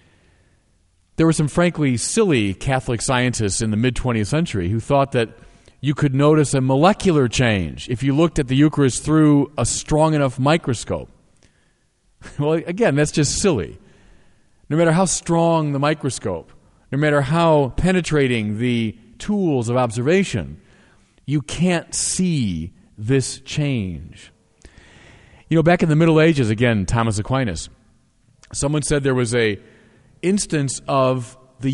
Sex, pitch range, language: male, 110-155 Hz, English